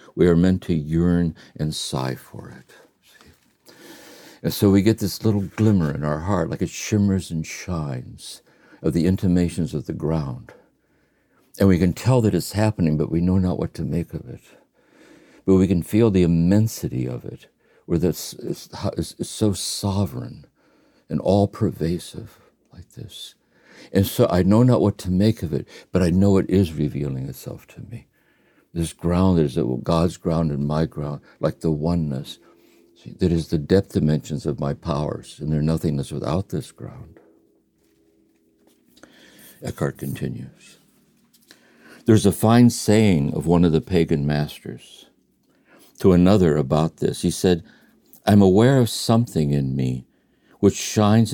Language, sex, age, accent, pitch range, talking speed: English, male, 60-79, American, 80-100 Hz, 155 wpm